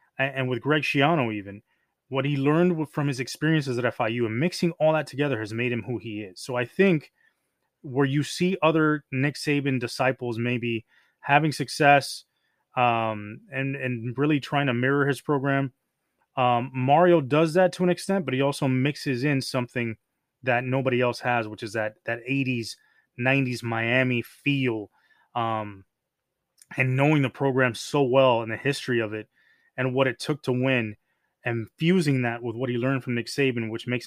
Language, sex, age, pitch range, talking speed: English, male, 20-39, 120-145 Hz, 180 wpm